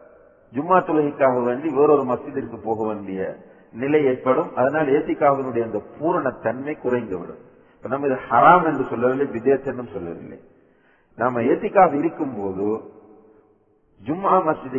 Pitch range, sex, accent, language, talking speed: 110-145 Hz, male, Indian, English, 95 wpm